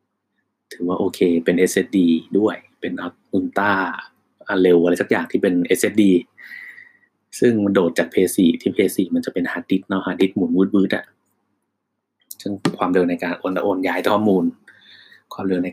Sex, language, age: male, Thai, 20-39